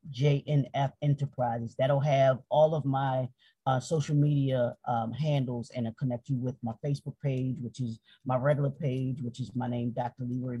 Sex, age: male, 40-59